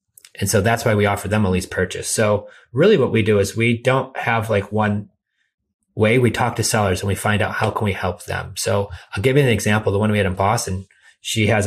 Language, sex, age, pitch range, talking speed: English, male, 30-49, 100-125 Hz, 250 wpm